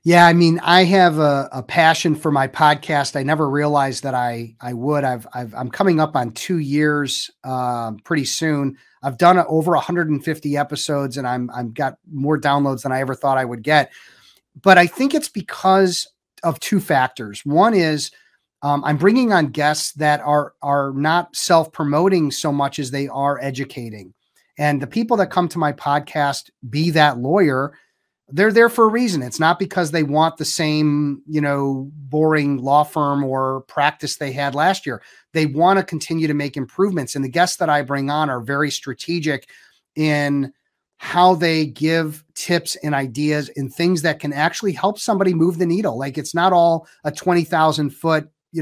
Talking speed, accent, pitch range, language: 185 wpm, American, 140-170 Hz, English